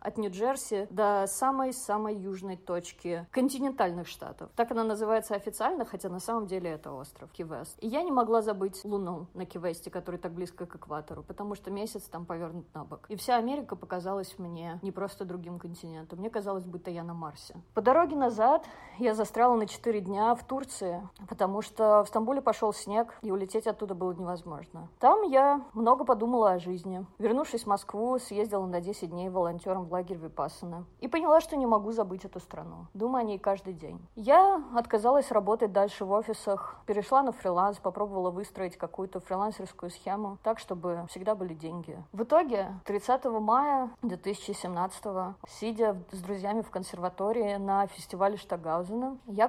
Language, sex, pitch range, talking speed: Russian, female, 180-230 Hz, 165 wpm